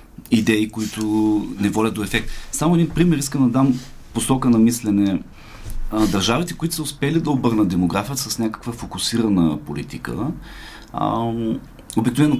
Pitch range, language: 90-130 Hz, Bulgarian